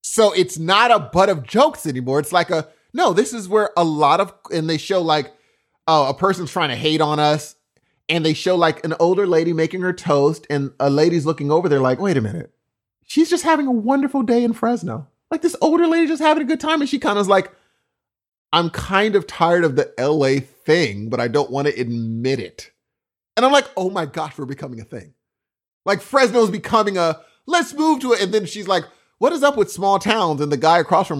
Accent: American